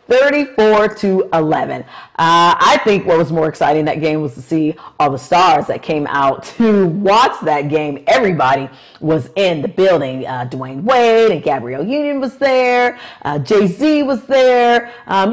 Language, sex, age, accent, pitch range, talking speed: English, female, 40-59, American, 165-225 Hz, 170 wpm